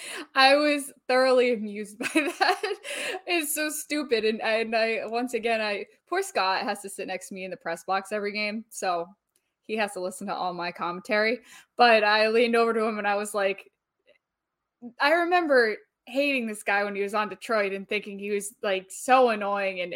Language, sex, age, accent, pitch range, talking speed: English, female, 10-29, American, 210-270 Hz, 200 wpm